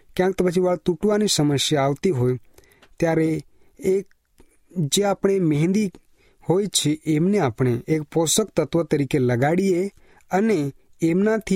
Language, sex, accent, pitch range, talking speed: Hindi, male, native, 145-190 Hz, 85 wpm